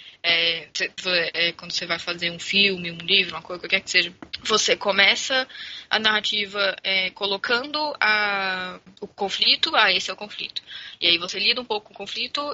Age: 10-29